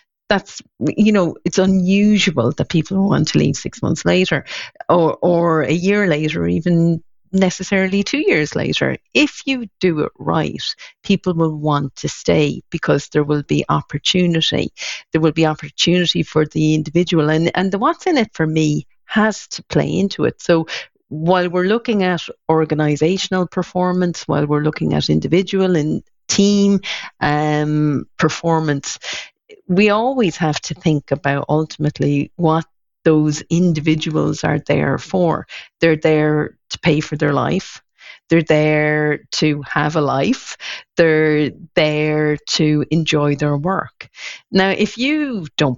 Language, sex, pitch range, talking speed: English, female, 150-185 Hz, 145 wpm